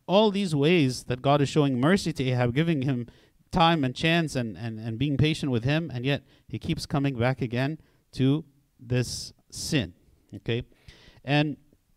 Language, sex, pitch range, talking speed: English, male, 115-150 Hz, 170 wpm